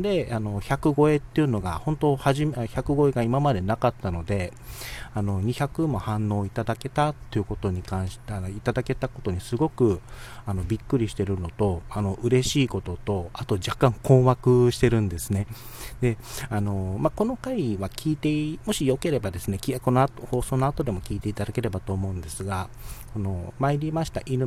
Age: 40-59